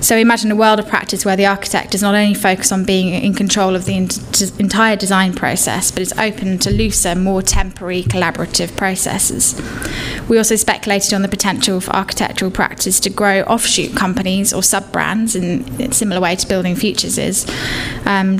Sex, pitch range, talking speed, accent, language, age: female, 185-205 Hz, 185 wpm, British, English, 10-29